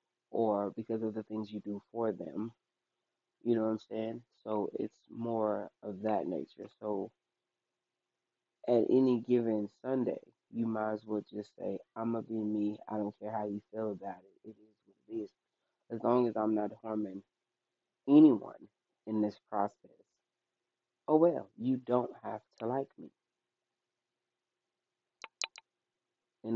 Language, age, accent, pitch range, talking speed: English, 20-39, American, 105-115 Hz, 155 wpm